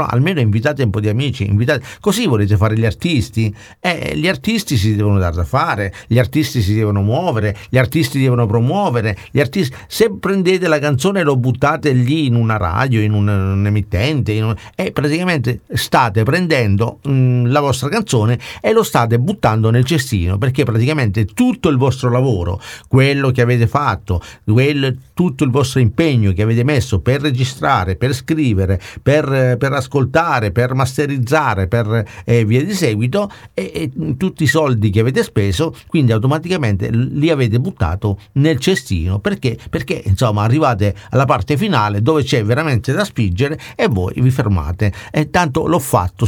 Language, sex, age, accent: Italian, male, 50-69, native